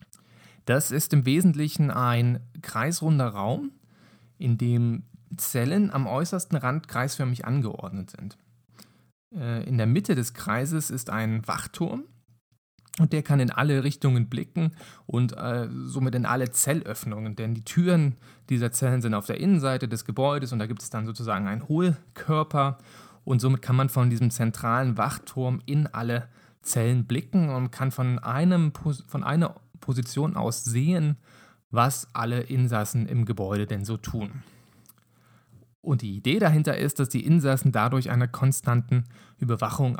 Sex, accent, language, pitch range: male, German, German, 120-145 Hz